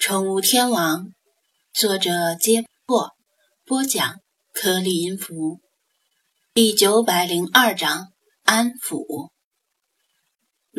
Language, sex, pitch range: Chinese, female, 190-255 Hz